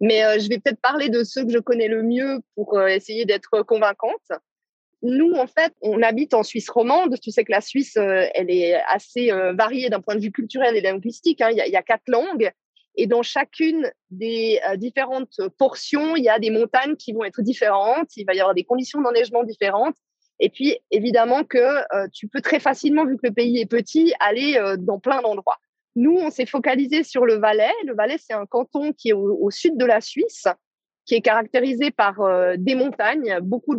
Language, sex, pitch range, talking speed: French, female, 220-290 Hz, 200 wpm